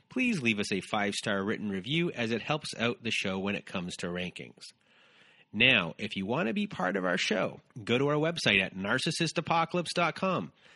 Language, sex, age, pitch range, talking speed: English, male, 30-49, 105-165 Hz, 190 wpm